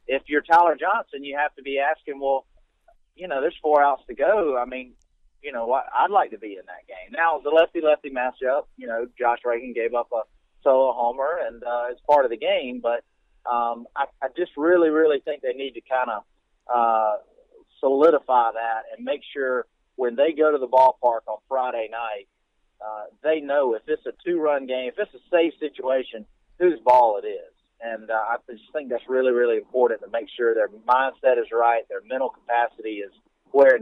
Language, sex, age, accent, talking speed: English, male, 30-49, American, 205 wpm